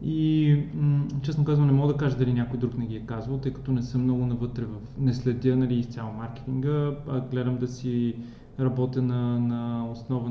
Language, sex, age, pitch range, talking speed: Bulgarian, male, 20-39, 120-135 Hz, 200 wpm